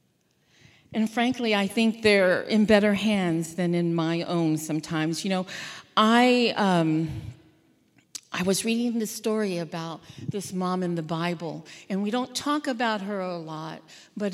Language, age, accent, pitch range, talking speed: English, 50-69, American, 175-235 Hz, 155 wpm